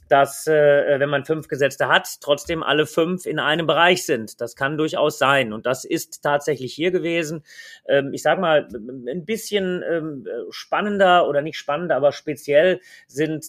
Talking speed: 155 wpm